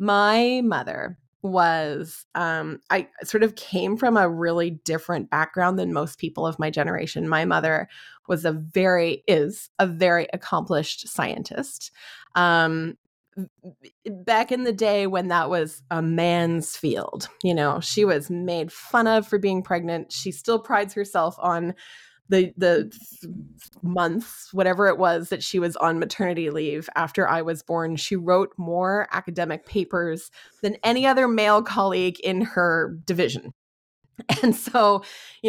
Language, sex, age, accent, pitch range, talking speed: English, female, 20-39, American, 165-205 Hz, 145 wpm